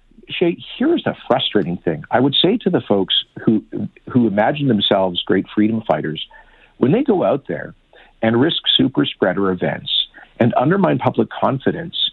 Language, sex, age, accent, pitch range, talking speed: English, male, 50-69, American, 100-165 Hz, 160 wpm